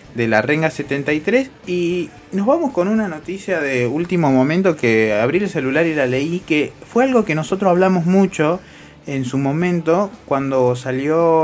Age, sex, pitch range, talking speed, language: 20-39, male, 130-175 Hz, 170 wpm, English